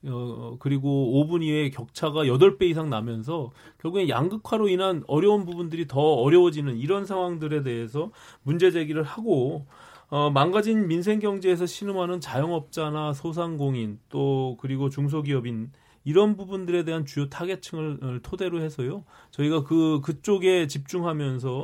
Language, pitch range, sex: Korean, 135-180 Hz, male